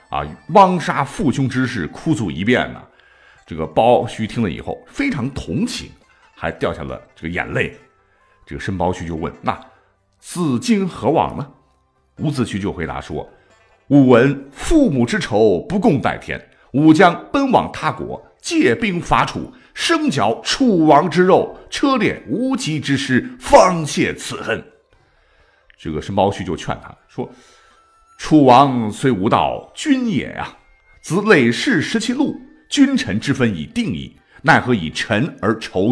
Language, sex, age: Chinese, male, 50-69